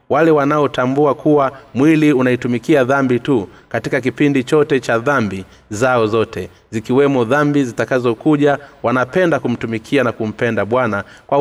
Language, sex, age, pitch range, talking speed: Swahili, male, 30-49, 110-140 Hz, 120 wpm